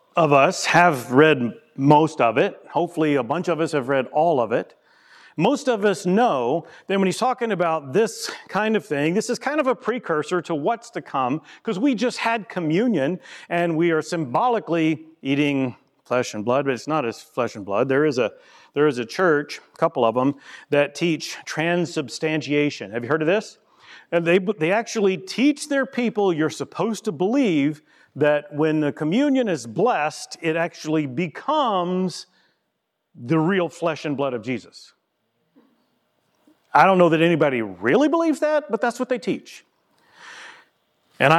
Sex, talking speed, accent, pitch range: male, 175 wpm, American, 145-210 Hz